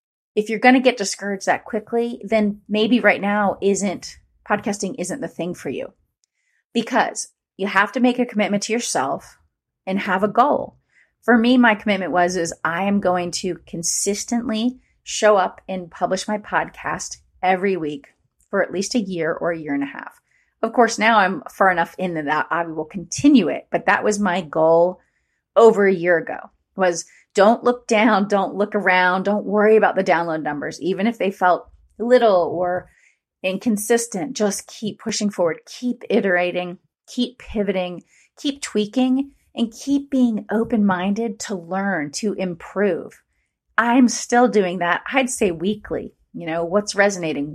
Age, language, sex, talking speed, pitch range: 30-49, English, female, 170 wpm, 180-225 Hz